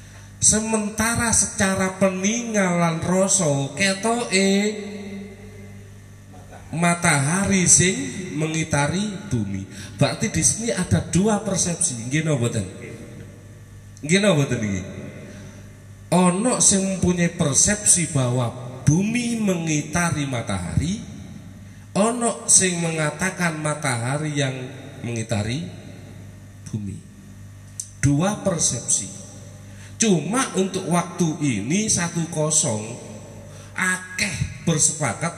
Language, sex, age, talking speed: Indonesian, male, 30-49, 75 wpm